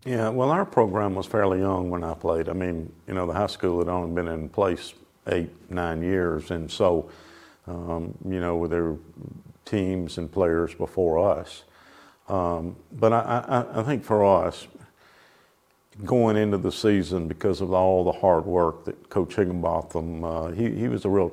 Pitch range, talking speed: 85-100 Hz, 180 wpm